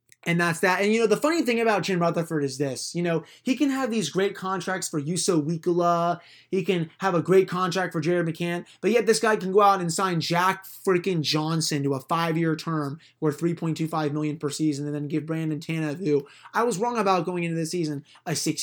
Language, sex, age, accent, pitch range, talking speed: English, male, 20-39, American, 155-190 Hz, 230 wpm